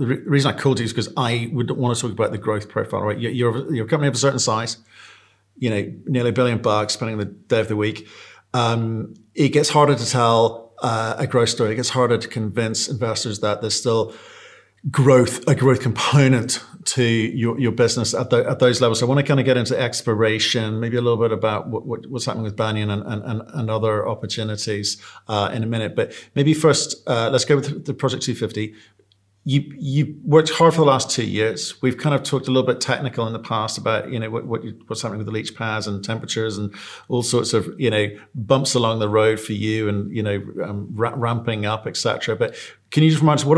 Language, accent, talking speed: English, British, 230 wpm